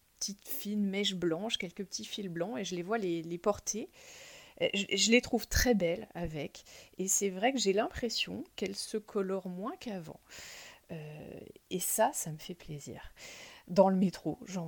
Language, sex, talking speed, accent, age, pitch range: French, female, 180 wpm, French, 30-49, 175-235 Hz